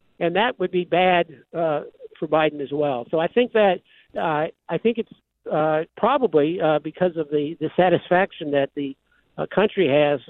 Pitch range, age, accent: 145-175 Hz, 60-79, American